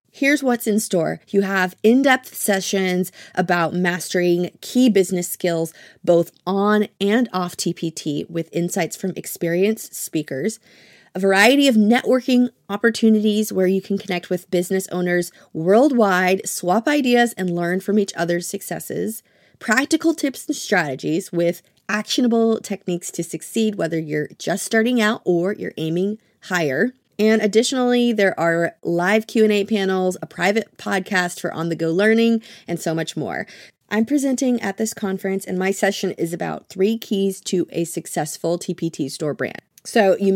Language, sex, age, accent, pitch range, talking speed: English, female, 30-49, American, 175-220 Hz, 145 wpm